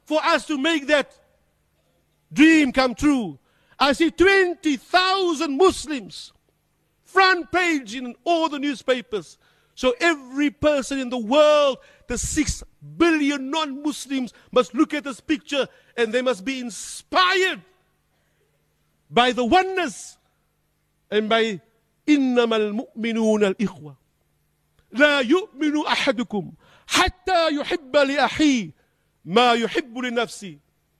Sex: male